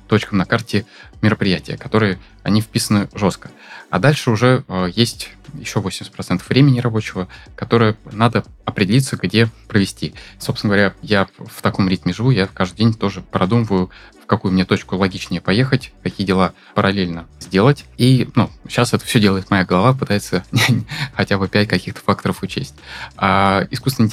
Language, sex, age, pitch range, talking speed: Russian, male, 20-39, 95-115 Hz, 155 wpm